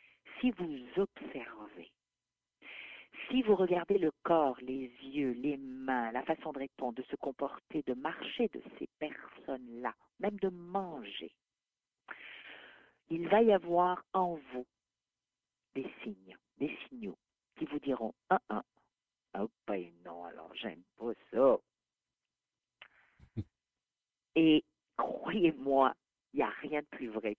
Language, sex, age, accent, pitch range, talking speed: French, female, 50-69, French, 130-200 Hz, 125 wpm